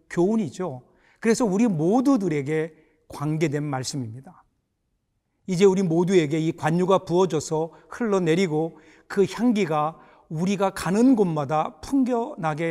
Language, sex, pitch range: Korean, male, 155-225 Hz